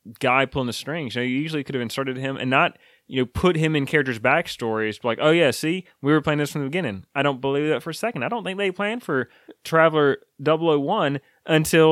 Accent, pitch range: American, 130-170 Hz